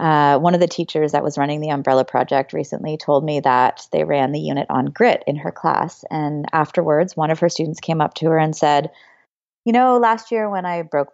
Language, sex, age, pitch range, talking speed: English, female, 30-49, 150-210 Hz, 230 wpm